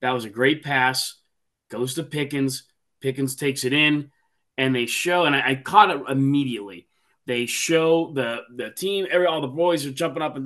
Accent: American